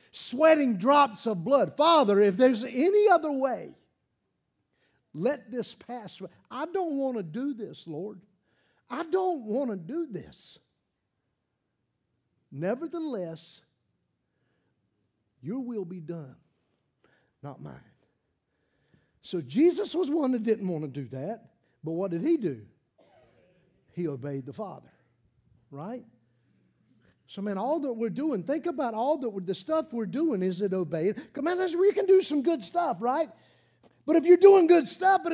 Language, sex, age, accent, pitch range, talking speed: English, male, 50-69, American, 185-310 Hz, 145 wpm